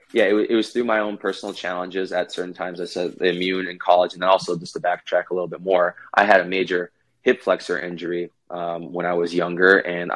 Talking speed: 240 wpm